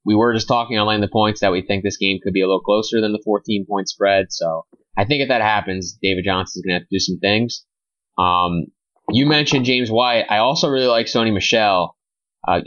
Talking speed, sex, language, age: 240 wpm, male, English, 20-39